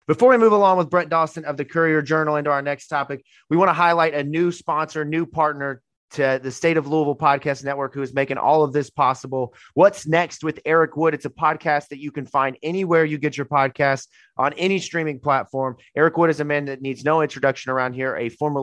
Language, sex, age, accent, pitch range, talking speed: English, male, 30-49, American, 130-150 Hz, 230 wpm